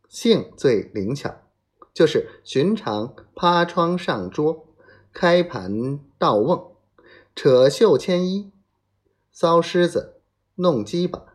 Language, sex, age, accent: Chinese, male, 30-49, native